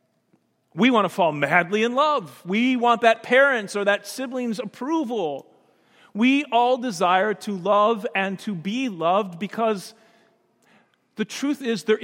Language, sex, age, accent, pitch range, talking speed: English, male, 40-59, American, 175-235 Hz, 145 wpm